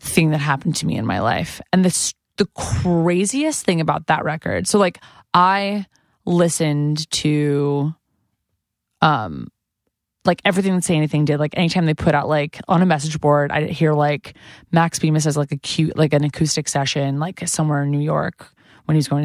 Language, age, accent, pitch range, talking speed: English, 20-39, American, 150-175 Hz, 185 wpm